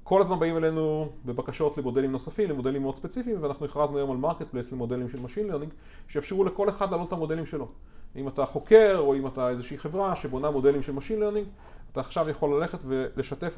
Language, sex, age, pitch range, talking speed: Hebrew, male, 30-49, 135-185 Hz, 195 wpm